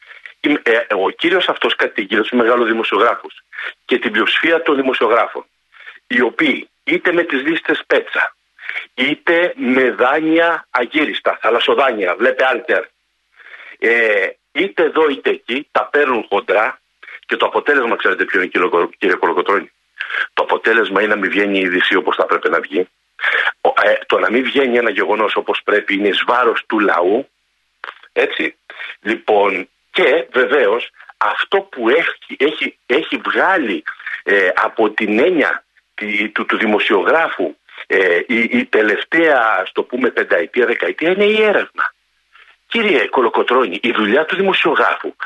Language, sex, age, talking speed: Greek, male, 50-69, 135 wpm